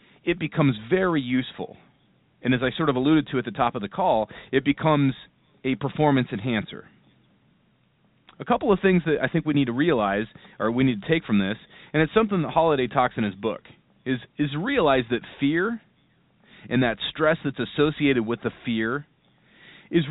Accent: American